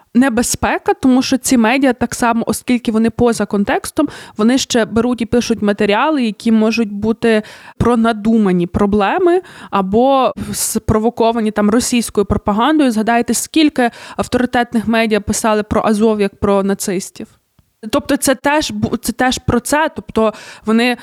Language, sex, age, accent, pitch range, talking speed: Ukrainian, female, 20-39, native, 215-255 Hz, 135 wpm